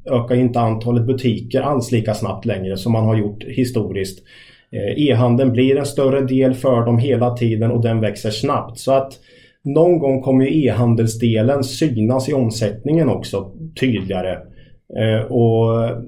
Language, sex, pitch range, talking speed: Swedish, male, 115-135 Hz, 145 wpm